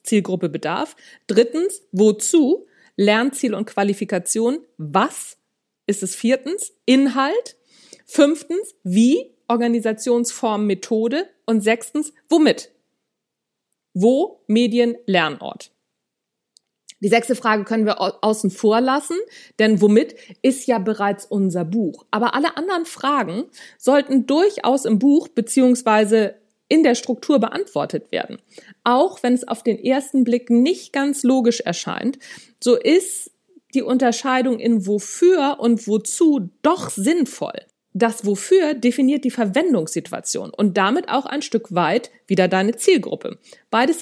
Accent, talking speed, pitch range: German, 120 wpm, 210-285 Hz